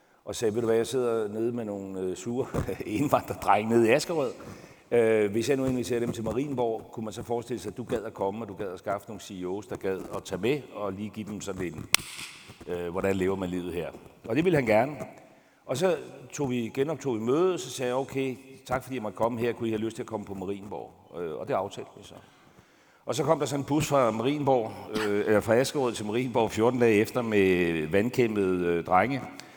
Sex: male